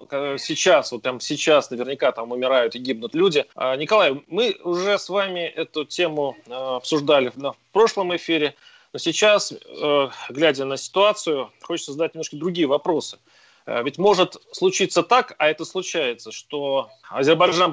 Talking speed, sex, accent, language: 135 wpm, male, native, Russian